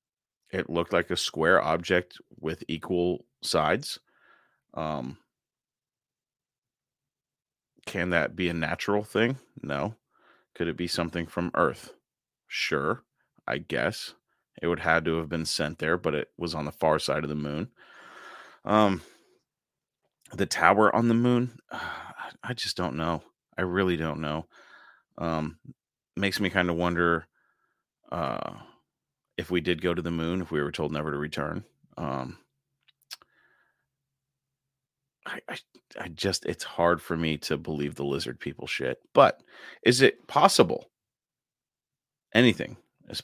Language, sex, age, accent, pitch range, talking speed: English, male, 30-49, American, 80-105 Hz, 140 wpm